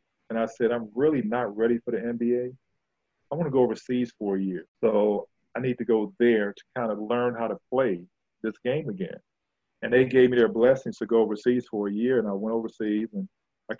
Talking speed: 225 wpm